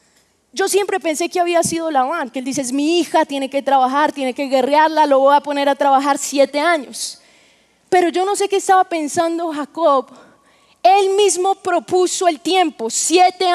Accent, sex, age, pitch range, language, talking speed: Colombian, female, 20-39, 325-390 Hz, Spanish, 185 wpm